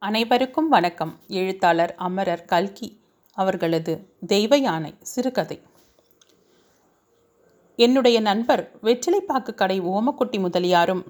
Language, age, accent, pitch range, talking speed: Tamil, 30-49, native, 185-250 Hz, 80 wpm